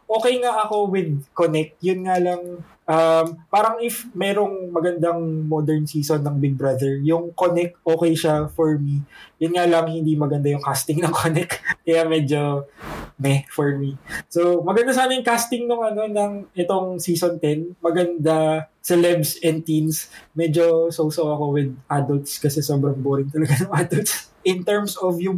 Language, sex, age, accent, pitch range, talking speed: Filipino, male, 20-39, native, 150-180 Hz, 160 wpm